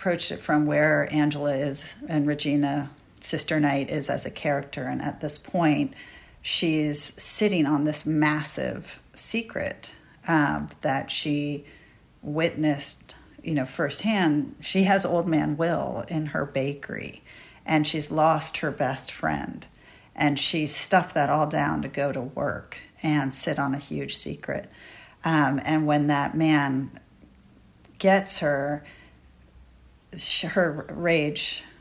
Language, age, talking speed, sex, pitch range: English, 40-59, 130 wpm, female, 145-165 Hz